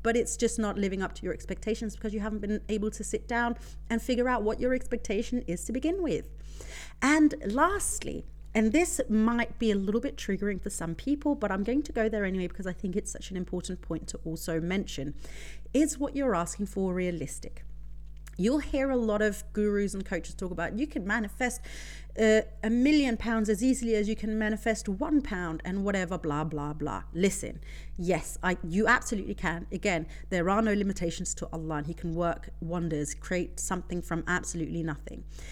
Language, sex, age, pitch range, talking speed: English, female, 30-49, 170-225 Hz, 200 wpm